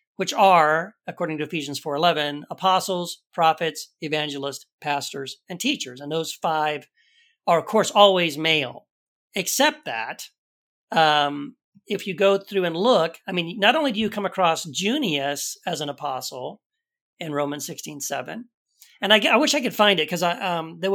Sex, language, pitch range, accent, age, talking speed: male, English, 145-195 Hz, American, 40-59, 160 wpm